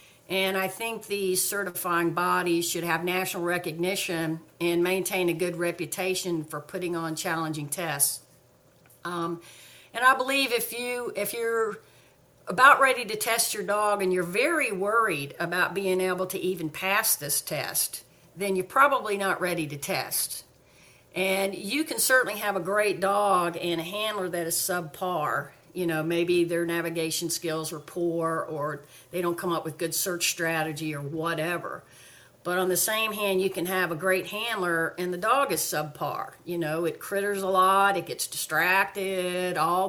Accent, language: American, English